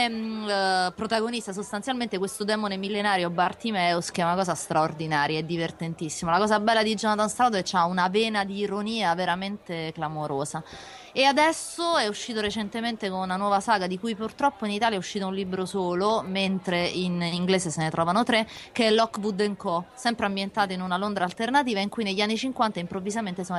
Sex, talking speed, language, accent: female, 180 wpm, Italian, native